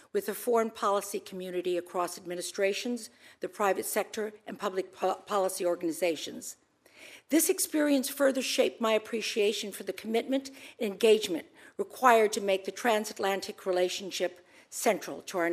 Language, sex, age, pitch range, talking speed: English, female, 50-69, 195-245 Hz, 130 wpm